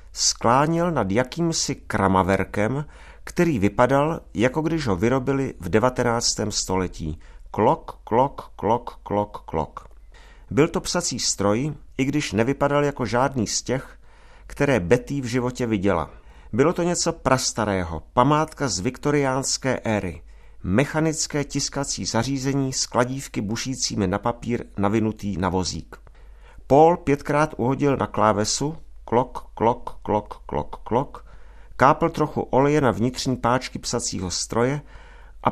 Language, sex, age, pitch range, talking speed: Czech, male, 50-69, 105-140 Hz, 120 wpm